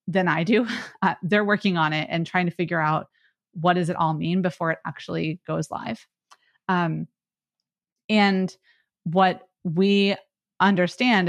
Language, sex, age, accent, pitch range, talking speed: English, female, 30-49, American, 160-190 Hz, 150 wpm